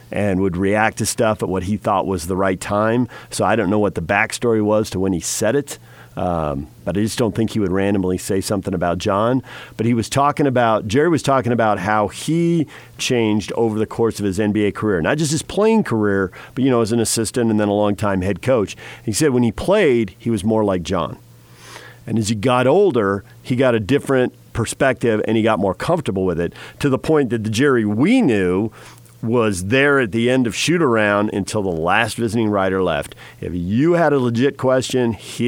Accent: American